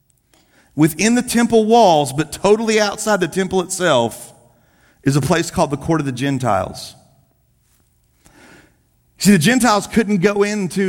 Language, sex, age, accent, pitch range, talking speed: English, male, 40-59, American, 130-180 Hz, 140 wpm